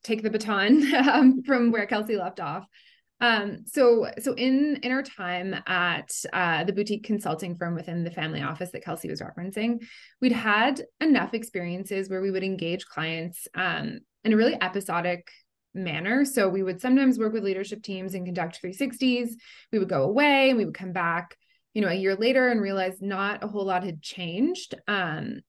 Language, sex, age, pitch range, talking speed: English, female, 20-39, 180-235 Hz, 185 wpm